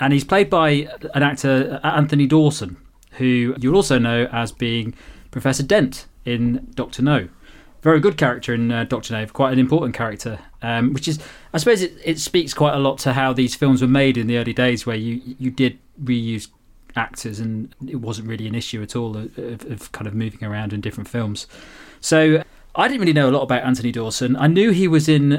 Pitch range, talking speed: 115-140 Hz, 215 wpm